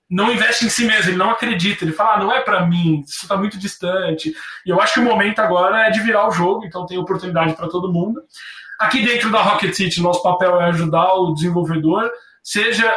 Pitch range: 175-215 Hz